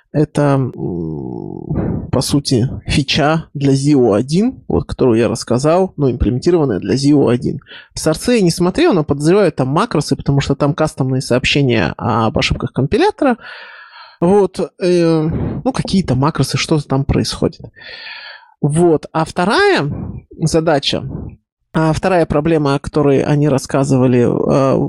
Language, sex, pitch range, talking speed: Russian, male, 140-170 Hz, 120 wpm